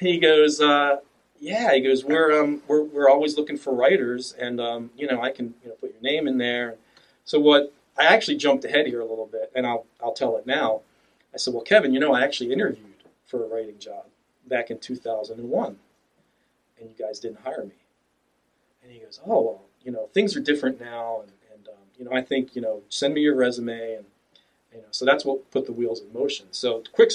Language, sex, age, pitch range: English, male, 40-59, 115-145 Hz